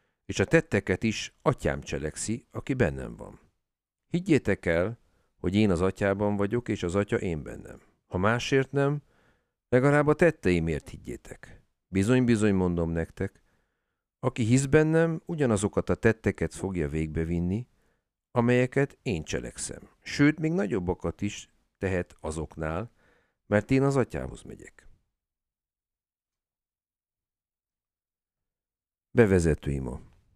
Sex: male